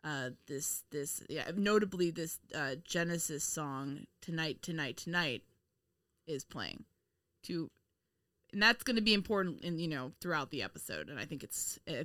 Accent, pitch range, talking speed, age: American, 150-200 Hz, 160 wpm, 20-39